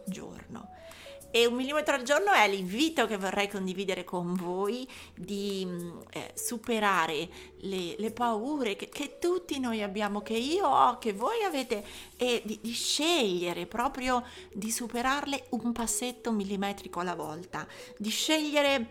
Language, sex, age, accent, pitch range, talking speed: Italian, female, 30-49, native, 195-260 Hz, 140 wpm